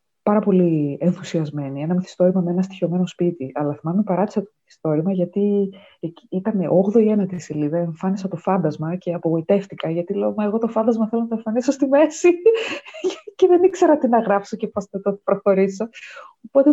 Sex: female